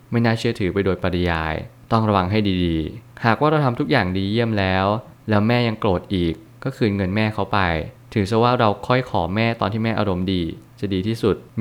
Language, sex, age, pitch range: Thai, male, 20-39, 95-115 Hz